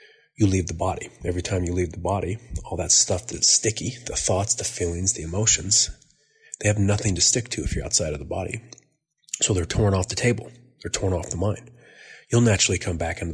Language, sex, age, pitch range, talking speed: English, male, 30-49, 90-105 Hz, 220 wpm